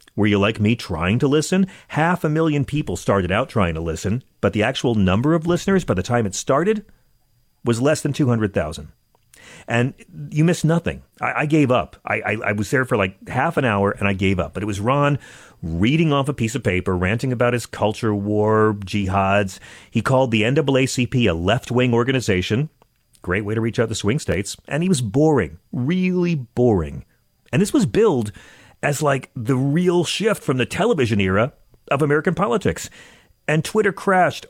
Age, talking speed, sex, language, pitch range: 40-59, 190 wpm, male, English, 100-150 Hz